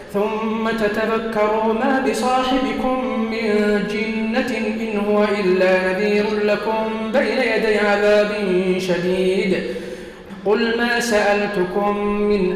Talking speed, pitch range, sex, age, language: 90 wpm, 185-220 Hz, male, 50-69, Arabic